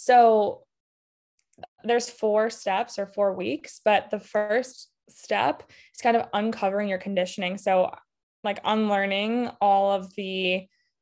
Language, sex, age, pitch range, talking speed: English, female, 20-39, 190-225 Hz, 125 wpm